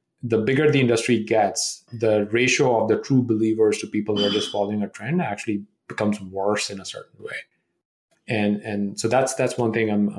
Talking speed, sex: 205 wpm, male